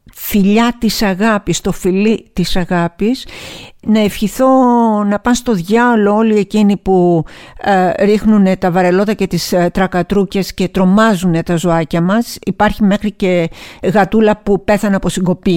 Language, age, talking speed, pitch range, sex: Greek, 50-69, 145 wpm, 180-215 Hz, female